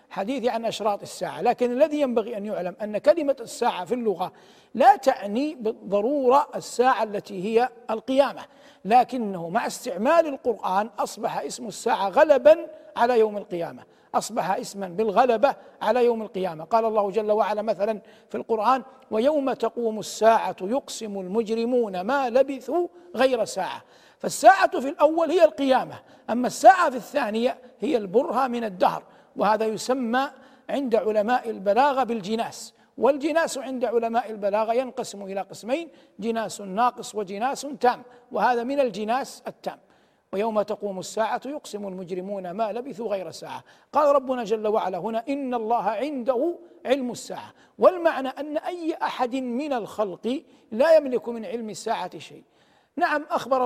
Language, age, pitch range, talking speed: Arabic, 60-79, 215-270 Hz, 135 wpm